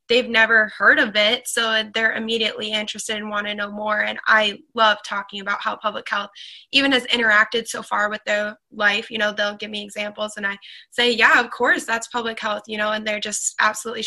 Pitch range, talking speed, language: 215-245 Hz, 220 wpm, English